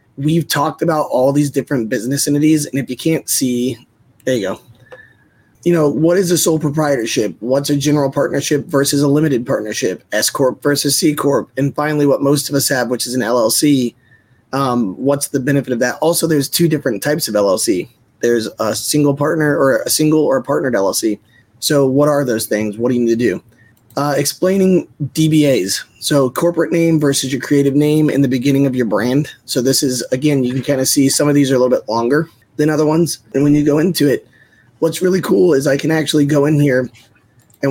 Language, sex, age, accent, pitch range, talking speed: English, male, 20-39, American, 125-150 Hz, 210 wpm